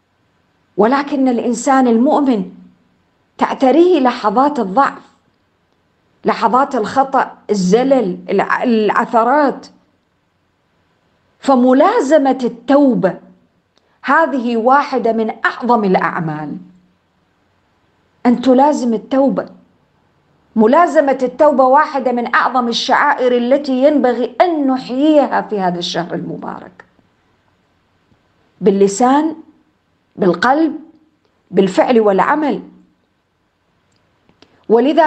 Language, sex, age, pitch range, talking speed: English, female, 50-69, 205-270 Hz, 65 wpm